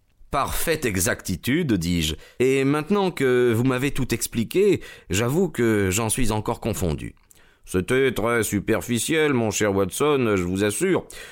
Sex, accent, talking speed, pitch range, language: male, French, 135 wpm, 95-125 Hz, French